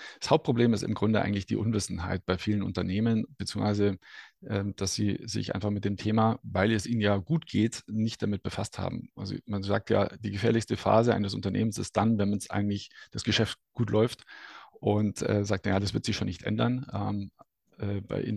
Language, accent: German, German